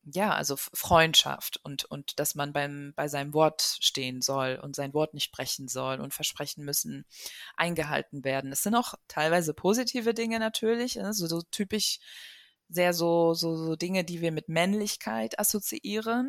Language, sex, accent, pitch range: German, female, German, 145-185 Hz